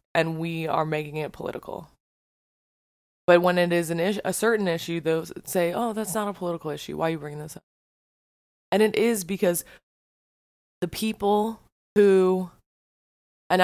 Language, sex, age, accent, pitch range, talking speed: English, female, 20-39, American, 155-190 Hz, 165 wpm